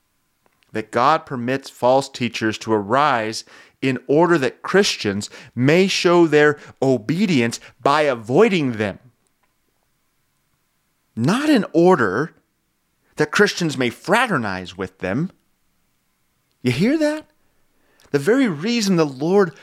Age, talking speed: 30-49, 105 wpm